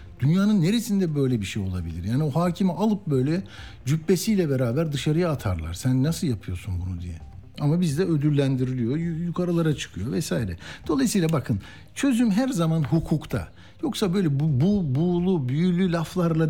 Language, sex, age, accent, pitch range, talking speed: Turkish, male, 60-79, native, 115-190 Hz, 140 wpm